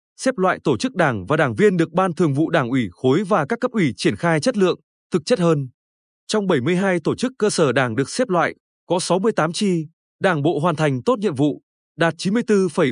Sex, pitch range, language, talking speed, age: male, 145-200 Hz, Vietnamese, 220 wpm, 20-39